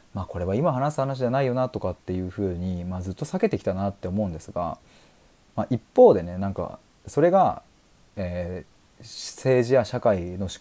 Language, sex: Japanese, male